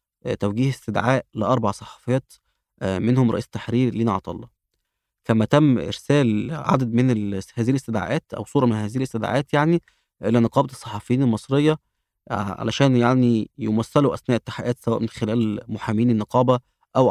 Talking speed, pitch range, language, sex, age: 130 wpm, 110-130 Hz, Arabic, male, 20-39